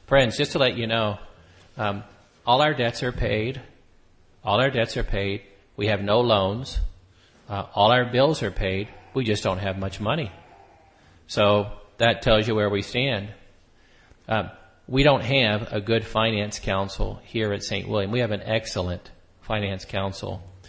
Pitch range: 100-115 Hz